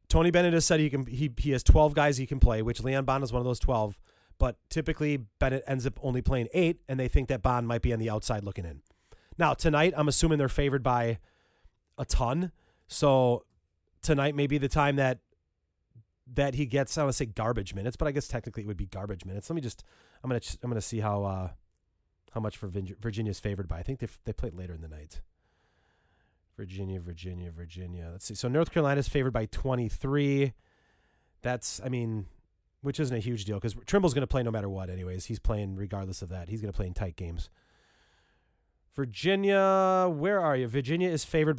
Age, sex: 30-49, male